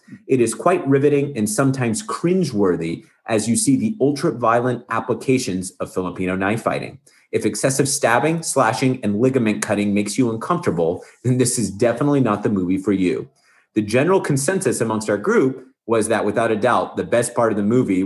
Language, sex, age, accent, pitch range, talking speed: English, male, 30-49, American, 100-130 Hz, 180 wpm